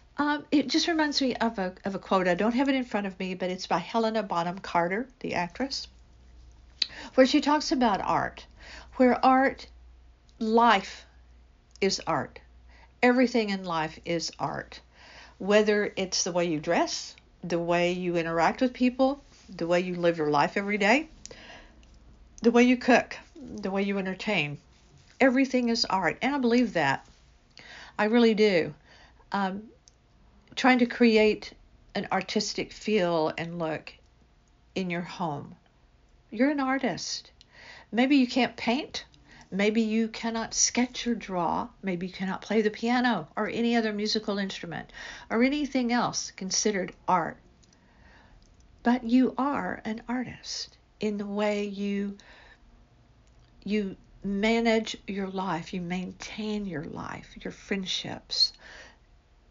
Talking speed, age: 140 wpm, 60-79